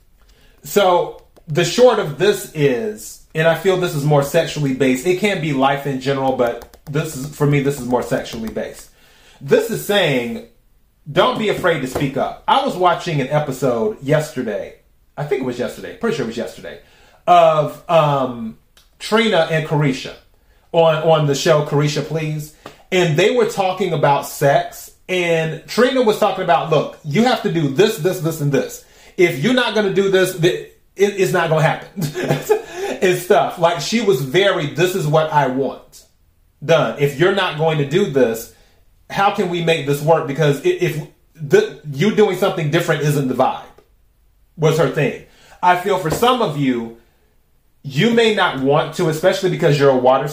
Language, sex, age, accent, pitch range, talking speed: English, male, 30-49, American, 140-190 Hz, 180 wpm